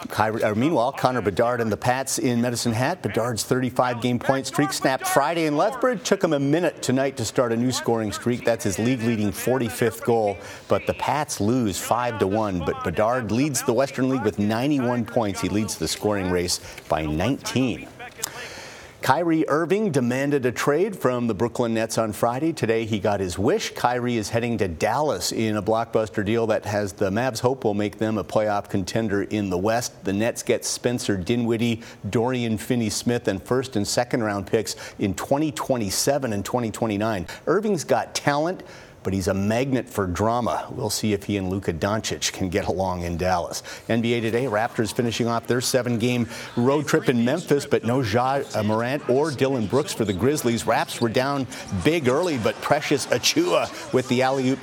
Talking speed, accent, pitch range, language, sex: 180 wpm, American, 110-130 Hz, English, male